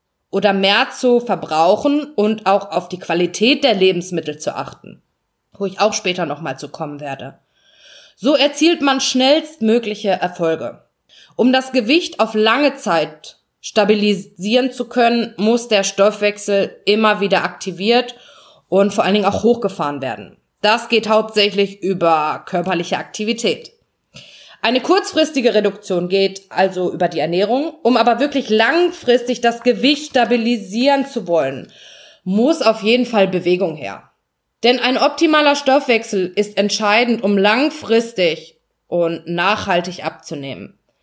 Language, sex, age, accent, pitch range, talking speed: German, female, 20-39, German, 185-245 Hz, 130 wpm